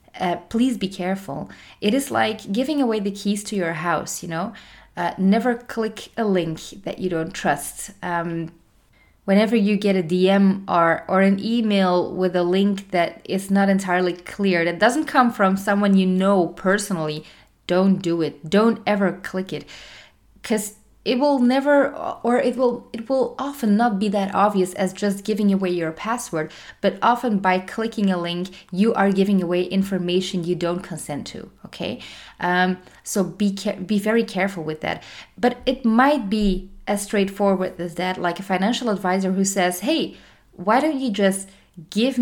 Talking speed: 175 wpm